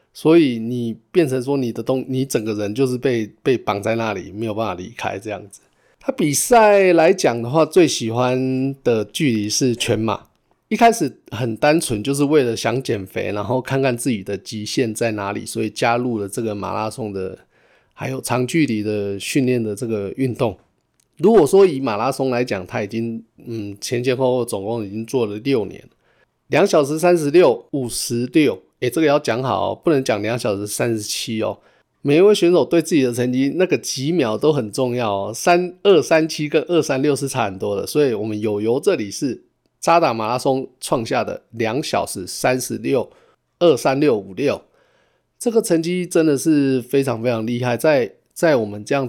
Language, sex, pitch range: Chinese, male, 110-145 Hz